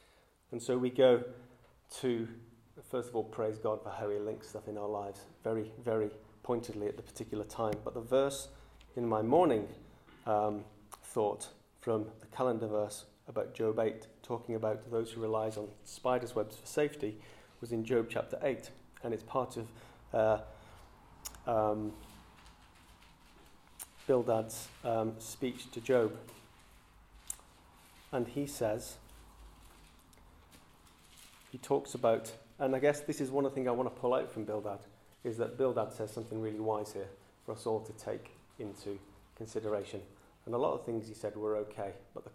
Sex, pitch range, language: male, 105-115 Hz, English